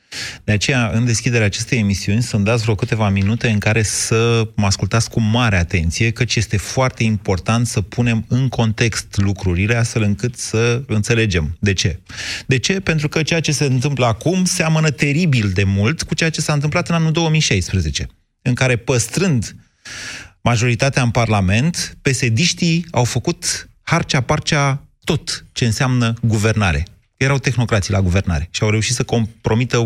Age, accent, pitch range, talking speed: 30-49, native, 105-145 Hz, 155 wpm